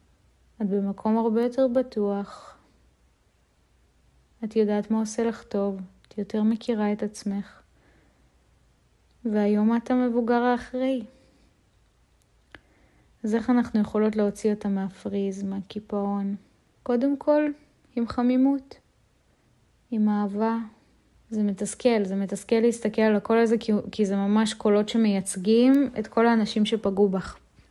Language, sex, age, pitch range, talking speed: Hebrew, female, 20-39, 205-240 Hz, 105 wpm